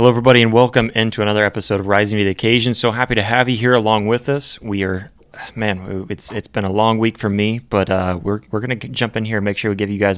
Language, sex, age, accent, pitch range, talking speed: English, male, 20-39, American, 100-115 Hz, 275 wpm